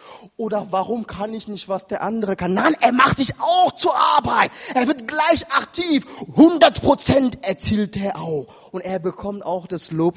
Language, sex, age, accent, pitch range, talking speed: German, male, 30-49, German, 135-205 Hz, 175 wpm